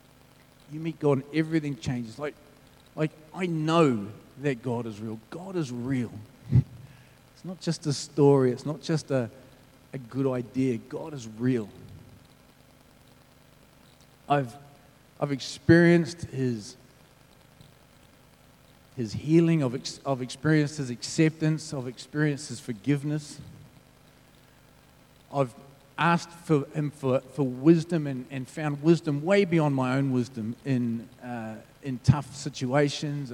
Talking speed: 120 wpm